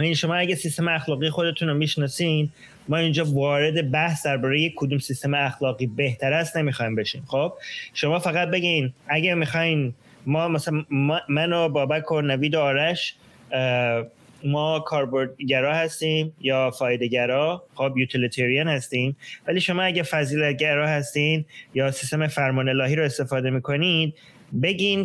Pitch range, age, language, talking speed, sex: 135-165 Hz, 20-39, Persian, 125 wpm, male